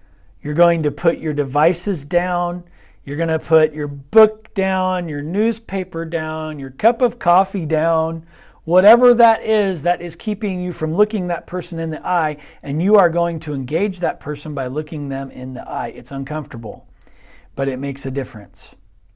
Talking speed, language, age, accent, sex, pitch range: 180 wpm, English, 40-59, American, male, 130-175 Hz